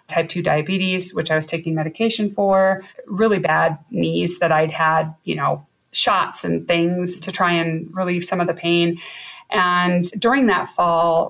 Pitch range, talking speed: 155-190 Hz, 170 wpm